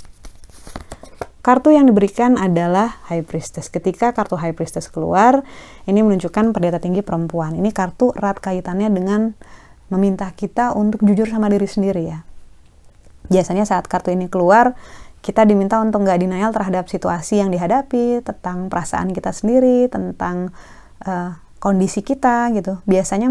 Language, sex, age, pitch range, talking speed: Indonesian, female, 20-39, 185-225 Hz, 135 wpm